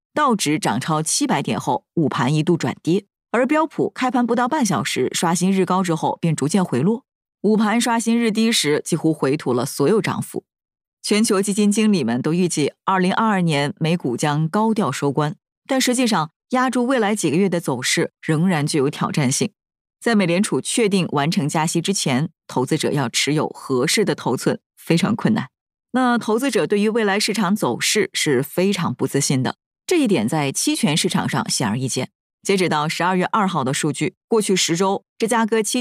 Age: 20-39